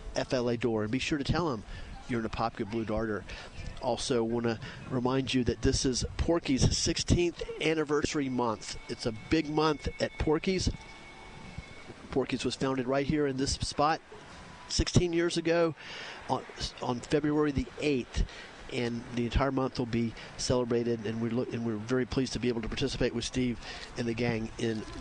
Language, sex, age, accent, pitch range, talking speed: English, male, 40-59, American, 120-145 Hz, 175 wpm